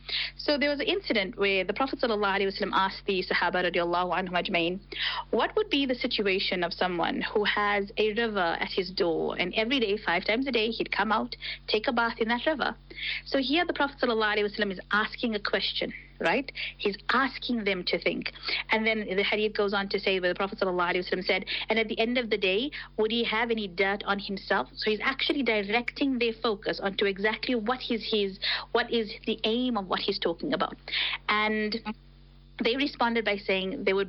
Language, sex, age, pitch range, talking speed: English, female, 30-49, 195-235 Hz, 195 wpm